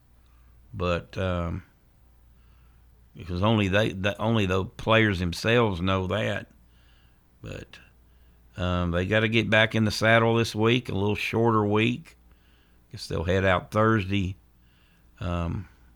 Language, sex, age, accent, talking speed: English, male, 50-69, American, 130 wpm